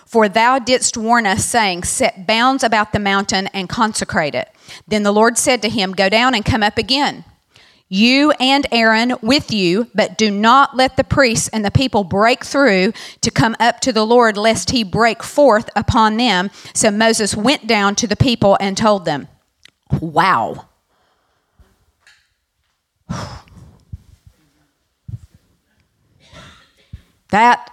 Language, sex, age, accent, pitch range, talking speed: English, female, 40-59, American, 195-240 Hz, 145 wpm